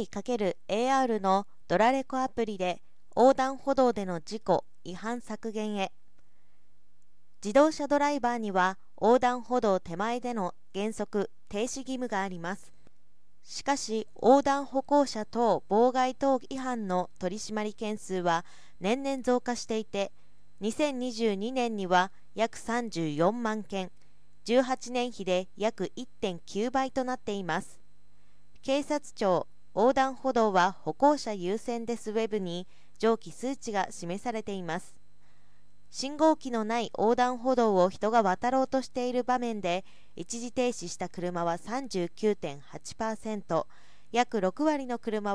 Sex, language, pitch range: female, Japanese, 190-250 Hz